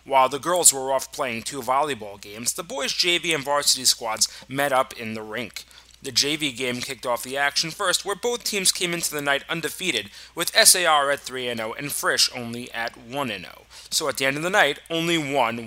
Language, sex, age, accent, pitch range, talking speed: English, male, 30-49, American, 125-170 Hz, 205 wpm